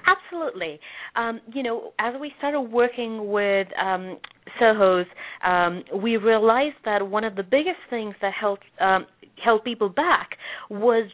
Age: 30-49